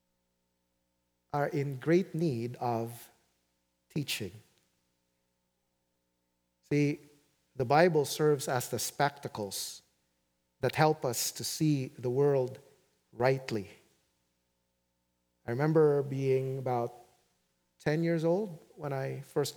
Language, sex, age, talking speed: English, male, 40-59, 95 wpm